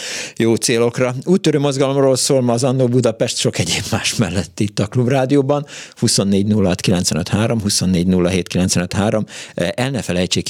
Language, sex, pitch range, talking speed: Hungarian, male, 95-120 Hz, 125 wpm